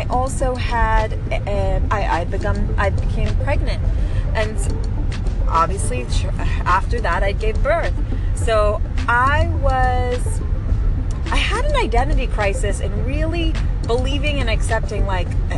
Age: 30-49